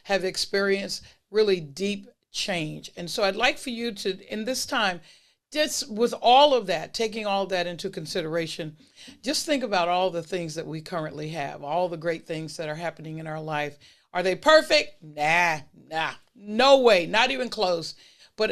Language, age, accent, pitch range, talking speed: English, 50-69, American, 160-205 Hz, 180 wpm